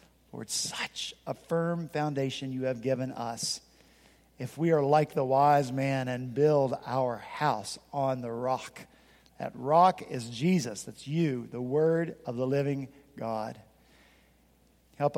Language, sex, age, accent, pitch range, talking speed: English, male, 50-69, American, 130-165 Hz, 140 wpm